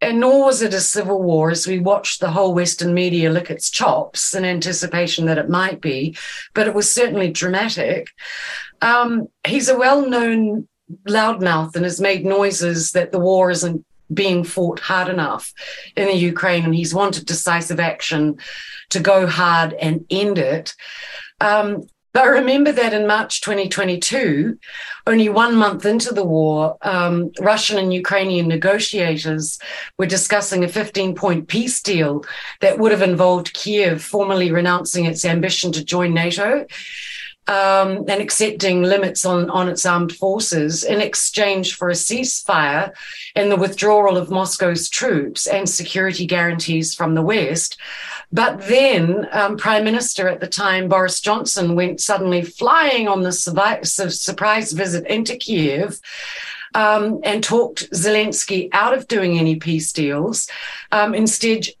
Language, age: English, 40-59